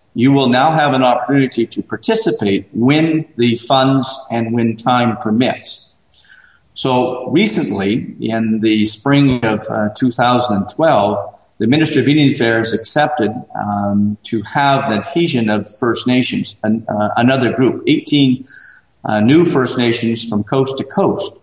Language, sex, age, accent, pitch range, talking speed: English, male, 50-69, American, 110-135 Hz, 135 wpm